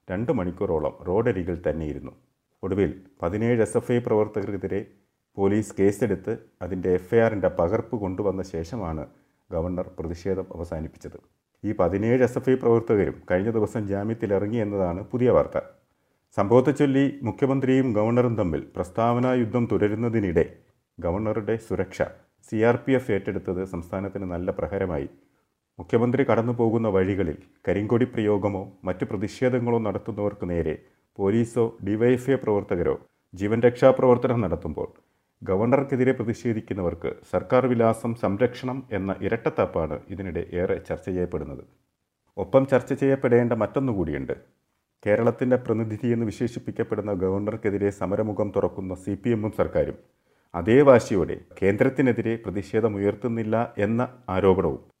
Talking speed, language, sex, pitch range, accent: 100 wpm, Malayalam, male, 95-120 Hz, native